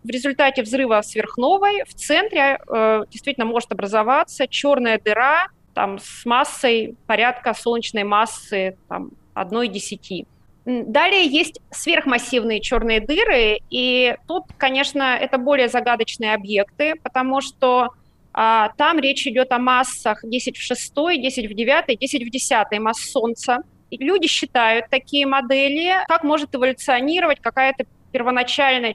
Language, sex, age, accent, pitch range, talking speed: Russian, female, 30-49, native, 230-280 Hz, 120 wpm